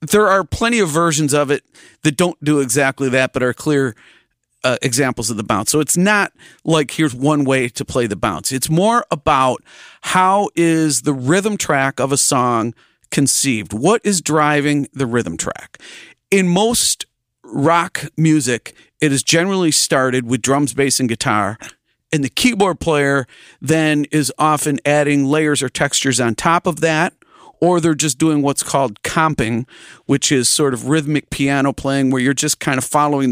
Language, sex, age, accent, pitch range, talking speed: English, male, 40-59, American, 130-165 Hz, 175 wpm